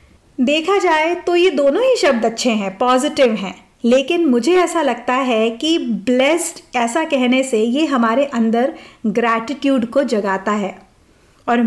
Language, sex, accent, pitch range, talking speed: Hindi, female, native, 230-310 Hz, 150 wpm